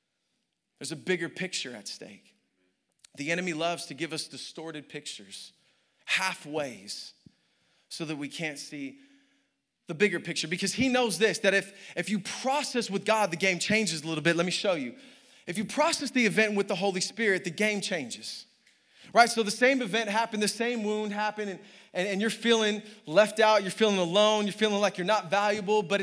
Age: 20-39